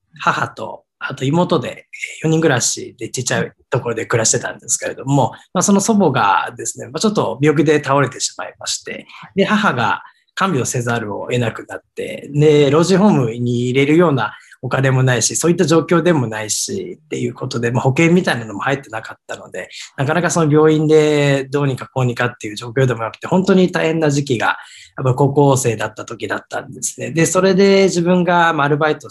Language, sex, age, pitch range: Japanese, male, 20-39, 125-170 Hz